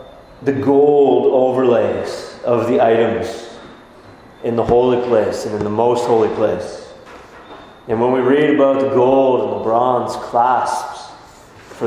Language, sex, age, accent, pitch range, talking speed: English, male, 30-49, American, 120-150 Hz, 140 wpm